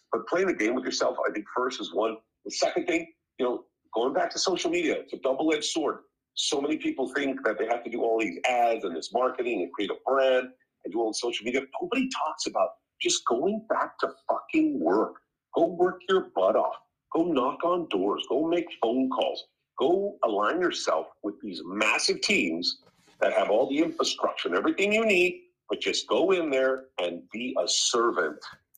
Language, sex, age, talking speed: English, male, 50-69, 200 wpm